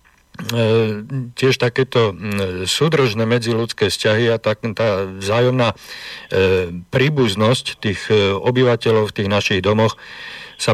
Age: 50-69